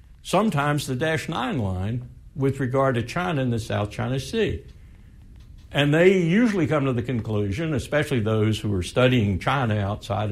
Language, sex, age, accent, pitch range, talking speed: English, male, 60-79, American, 105-145 Hz, 165 wpm